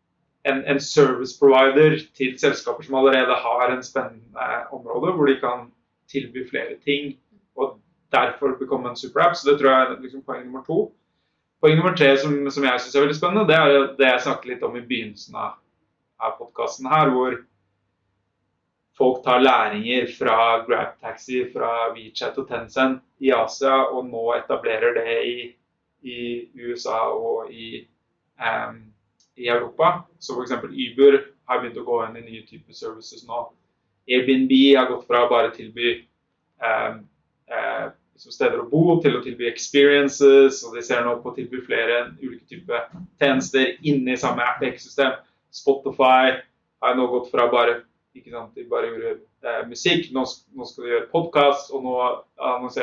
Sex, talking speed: male, 175 wpm